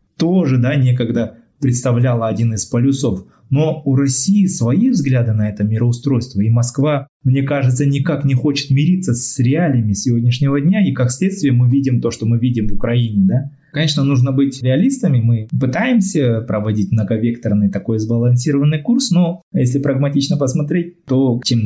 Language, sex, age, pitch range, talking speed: Russian, male, 20-39, 110-140 Hz, 155 wpm